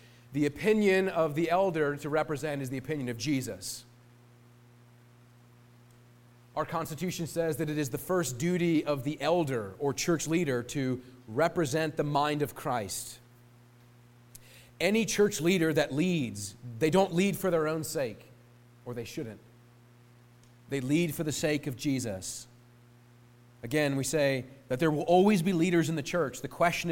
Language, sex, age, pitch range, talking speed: English, male, 30-49, 120-160 Hz, 155 wpm